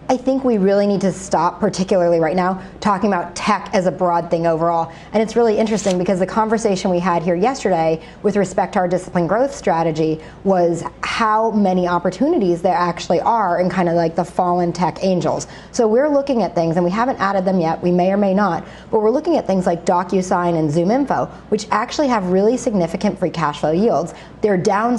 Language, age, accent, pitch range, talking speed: English, 30-49, American, 175-220 Hz, 210 wpm